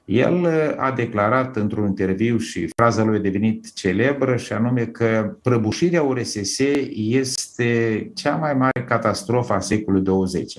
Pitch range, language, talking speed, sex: 105-130 Hz, Romanian, 135 wpm, male